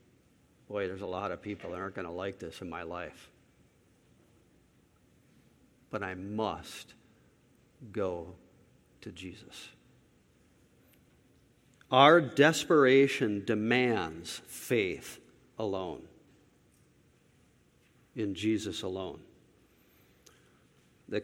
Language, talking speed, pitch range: English, 85 wpm, 135-170 Hz